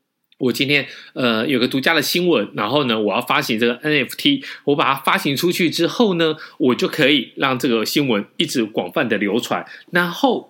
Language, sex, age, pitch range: Chinese, male, 20-39, 125-190 Hz